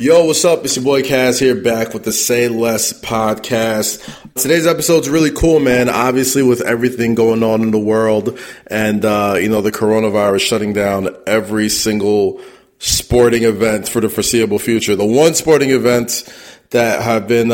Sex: male